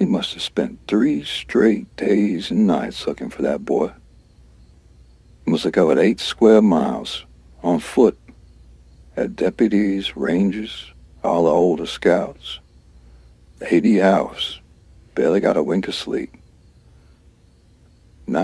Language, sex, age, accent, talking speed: English, male, 60-79, American, 125 wpm